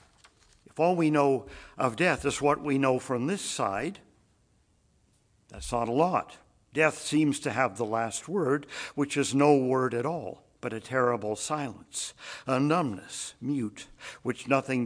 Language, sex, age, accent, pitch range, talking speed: English, male, 60-79, American, 115-150 Hz, 160 wpm